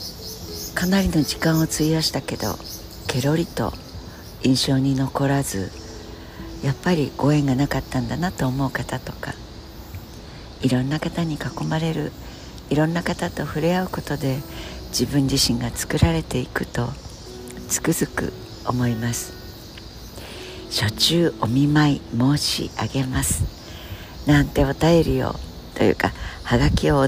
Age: 60-79